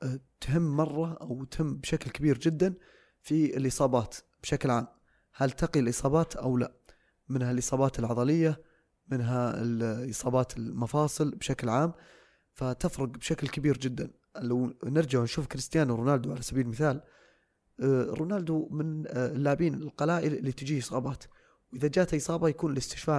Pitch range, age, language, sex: 130-160 Hz, 20-39, Arabic, male